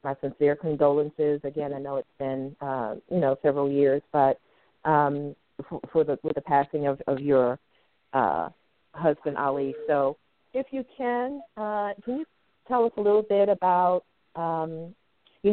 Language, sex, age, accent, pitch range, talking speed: English, female, 40-59, American, 145-195 Hz, 160 wpm